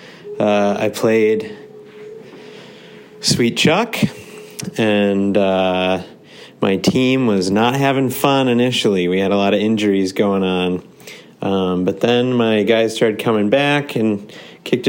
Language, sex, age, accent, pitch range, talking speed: English, male, 30-49, American, 100-125 Hz, 130 wpm